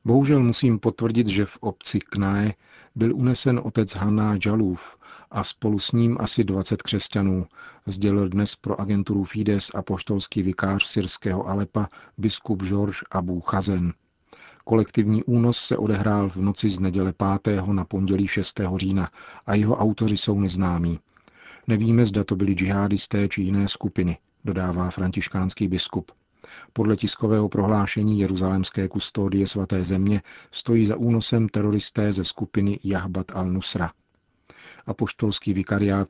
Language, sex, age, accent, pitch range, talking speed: Czech, male, 40-59, native, 95-105 Hz, 130 wpm